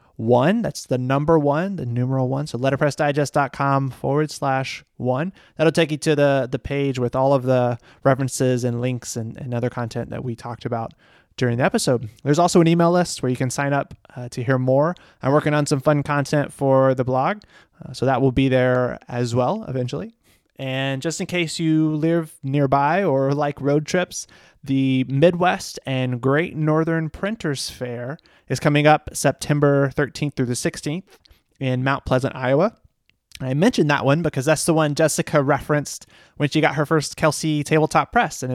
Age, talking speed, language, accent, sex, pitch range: 20-39, 185 wpm, English, American, male, 130-155 Hz